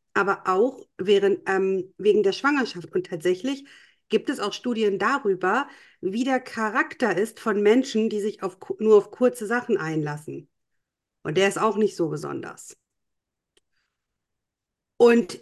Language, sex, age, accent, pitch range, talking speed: German, female, 50-69, German, 185-245 Hz, 140 wpm